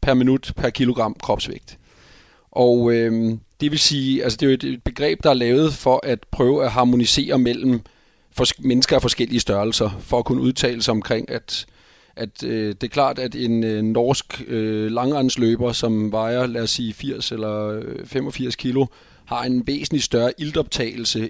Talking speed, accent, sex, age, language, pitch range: 170 wpm, native, male, 30-49, Danish, 110-130 Hz